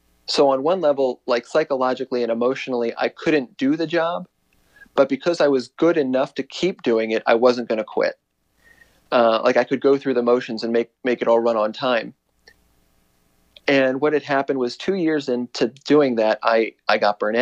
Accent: American